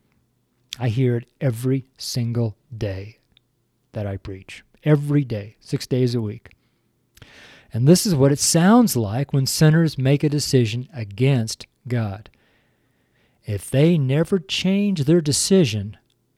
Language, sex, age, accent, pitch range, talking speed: English, male, 50-69, American, 115-145 Hz, 130 wpm